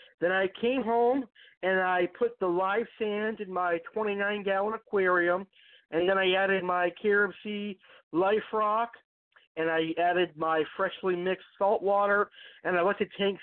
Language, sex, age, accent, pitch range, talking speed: English, male, 50-69, American, 175-205 Hz, 165 wpm